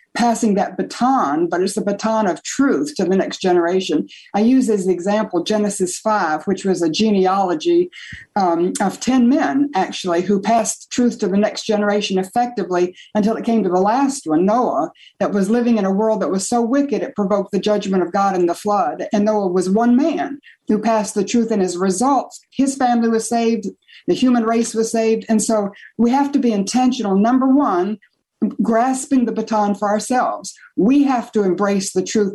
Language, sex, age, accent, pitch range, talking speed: English, female, 60-79, American, 195-235 Hz, 195 wpm